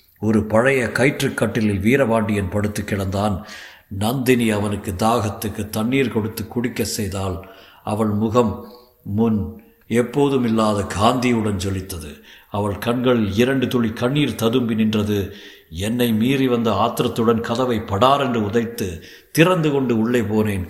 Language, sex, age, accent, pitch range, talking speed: Tamil, male, 50-69, native, 105-125 Hz, 105 wpm